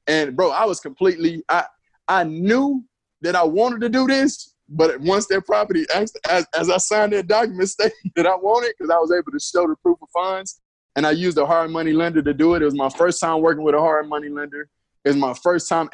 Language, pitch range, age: English, 140-200 Hz, 20-39